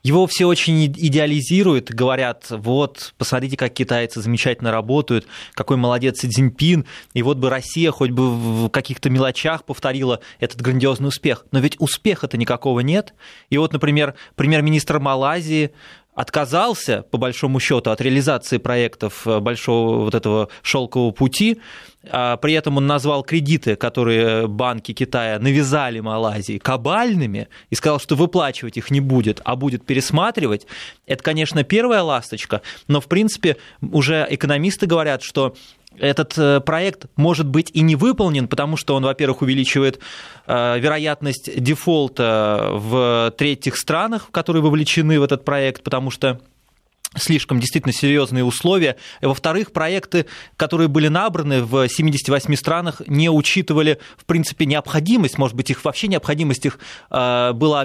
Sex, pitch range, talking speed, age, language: male, 125-155 Hz, 135 wpm, 20-39, Russian